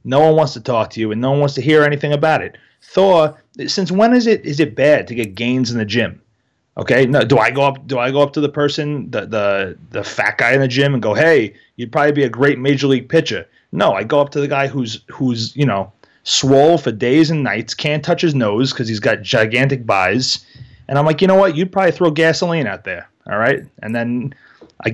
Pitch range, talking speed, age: 125-165 Hz, 250 wpm, 30-49